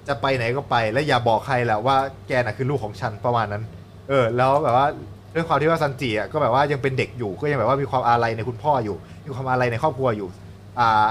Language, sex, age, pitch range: Thai, male, 20-39, 105-140 Hz